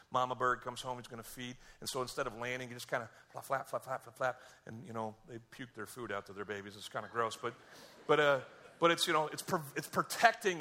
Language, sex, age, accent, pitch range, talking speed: English, male, 40-59, American, 95-130 Hz, 270 wpm